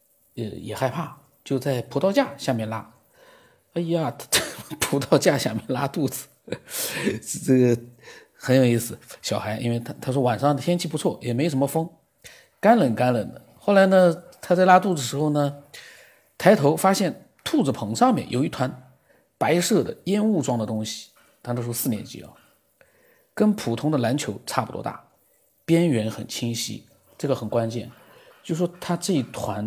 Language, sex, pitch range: Chinese, male, 120-175 Hz